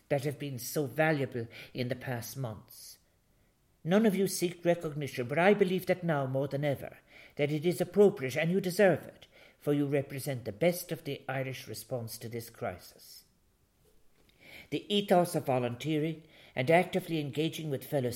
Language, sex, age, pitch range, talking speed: English, male, 60-79, 130-165 Hz, 170 wpm